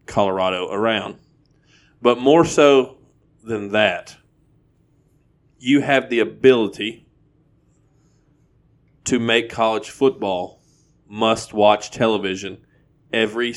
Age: 40-59